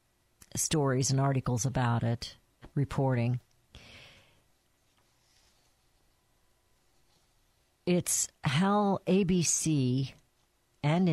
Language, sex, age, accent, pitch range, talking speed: English, female, 50-69, American, 125-180 Hz, 55 wpm